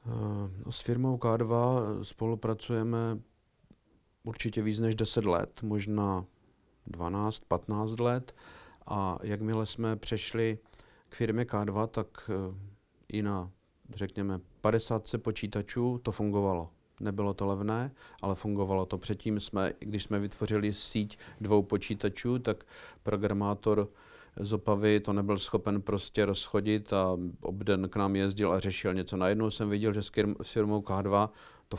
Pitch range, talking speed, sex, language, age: 95-110 Hz, 125 wpm, male, Czech, 50-69